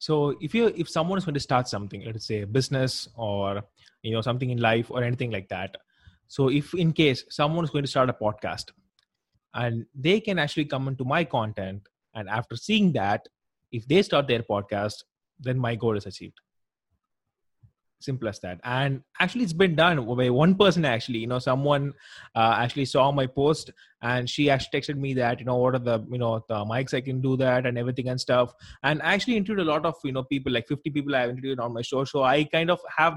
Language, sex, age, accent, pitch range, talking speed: English, male, 20-39, Indian, 125-155 Hz, 225 wpm